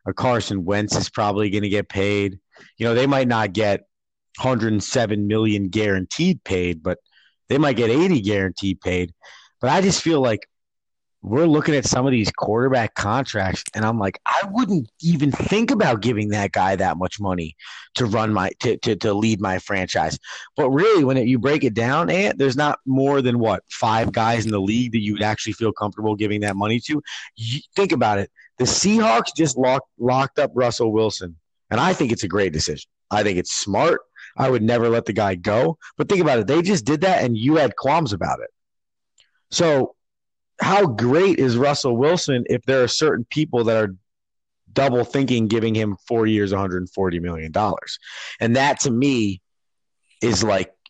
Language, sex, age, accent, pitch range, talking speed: English, male, 30-49, American, 105-130 Hz, 190 wpm